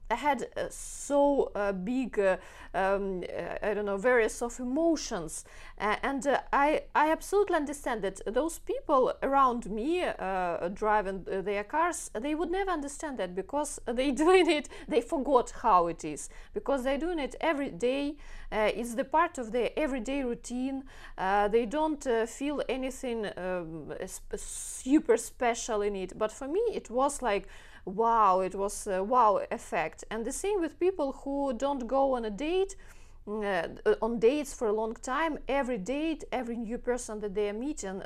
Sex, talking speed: female, 175 wpm